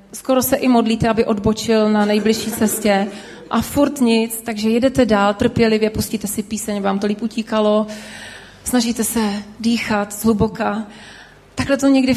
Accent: native